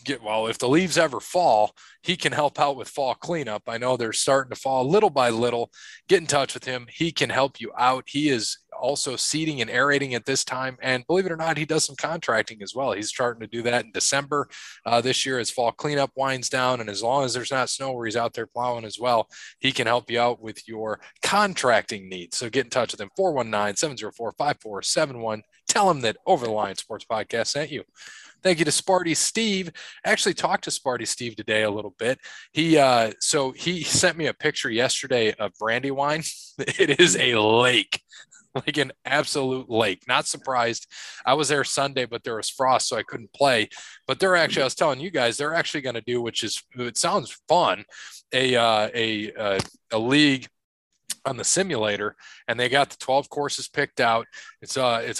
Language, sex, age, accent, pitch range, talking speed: English, male, 20-39, American, 115-145 Hz, 210 wpm